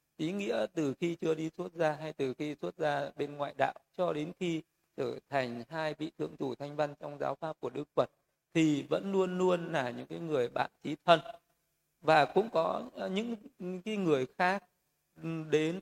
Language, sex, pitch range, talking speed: Vietnamese, male, 145-175 Hz, 195 wpm